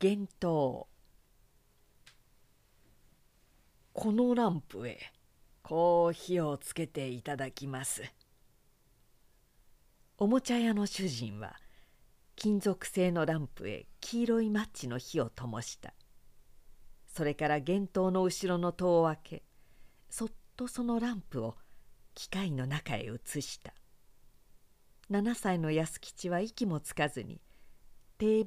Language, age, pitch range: Japanese, 50-69, 145-200 Hz